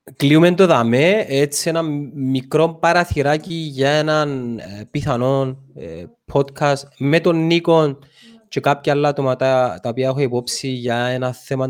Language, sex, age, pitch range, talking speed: Greek, male, 20-39, 120-150 Hz, 135 wpm